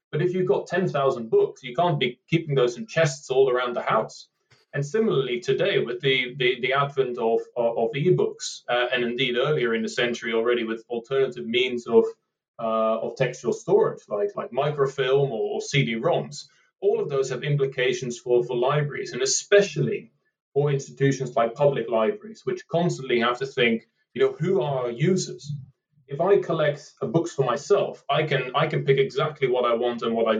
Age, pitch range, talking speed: 30-49, 130-195 Hz, 185 wpm